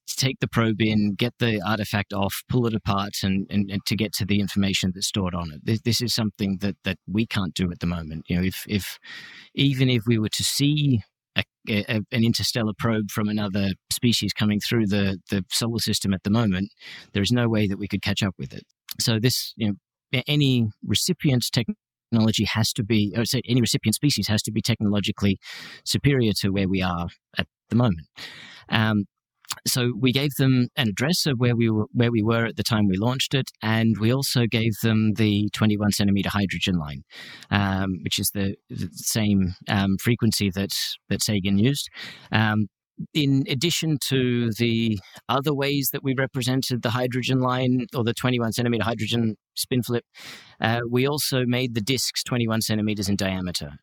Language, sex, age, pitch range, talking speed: English, male, 30-49, 100-125 Hz, 195 wpm